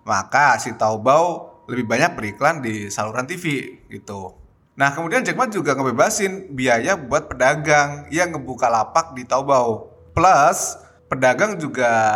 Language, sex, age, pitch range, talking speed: Indonesian, male, 20-39, 115-155 Hz, 135 wpm